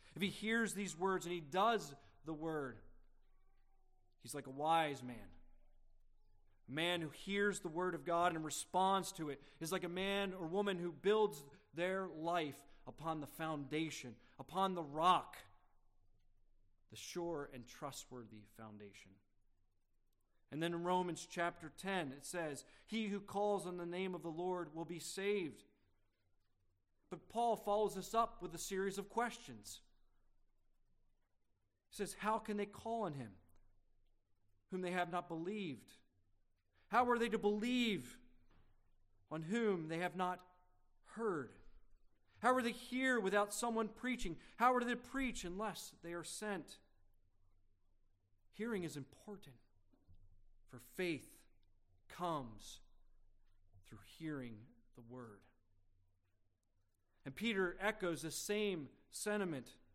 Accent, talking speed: American, 135 wpm